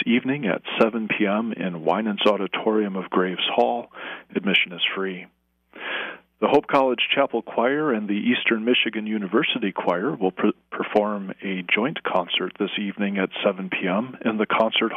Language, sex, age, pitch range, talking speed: English, male, 40-59, 95-120 Hz, 150 wpm